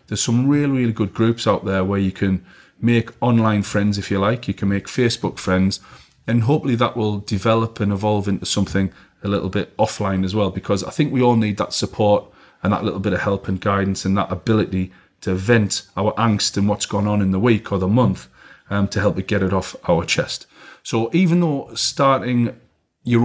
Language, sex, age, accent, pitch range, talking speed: English, male, 30-49, British, 100-115 Hz, 215 wpm